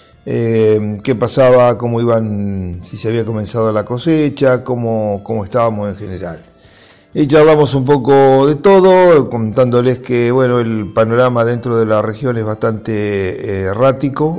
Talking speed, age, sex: 140 wpm, 50-69, male